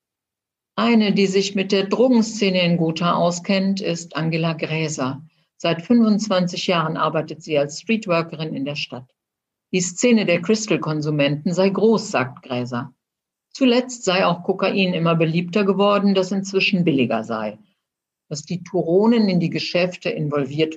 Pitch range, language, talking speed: 150-195 Hz, German, 140 wpm